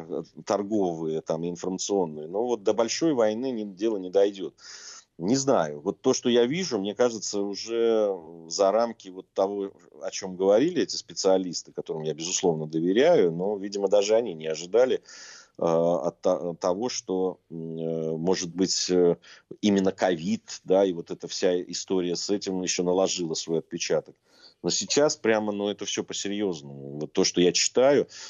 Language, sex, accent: Russian, male, native